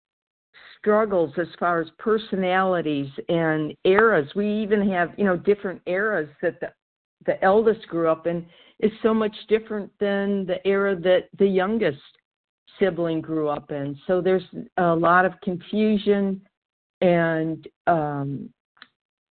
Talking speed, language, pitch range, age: 135 wpm, English, 160-200 Hz, 50-69